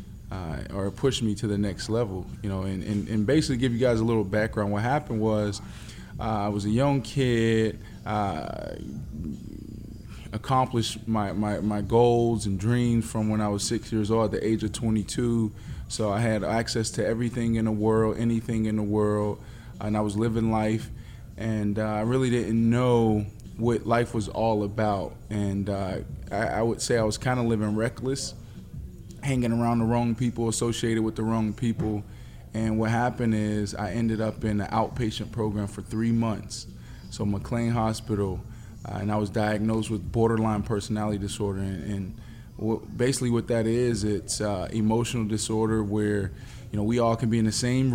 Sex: male